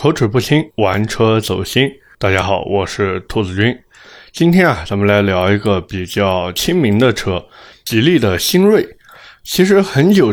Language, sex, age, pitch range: Chinese, male, 20-39, 100-130 Hz